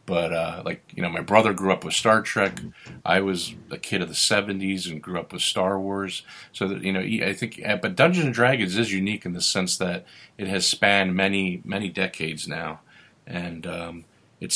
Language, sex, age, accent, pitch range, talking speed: English, male, 40-59, American, 85-100 Hz, 200 wpm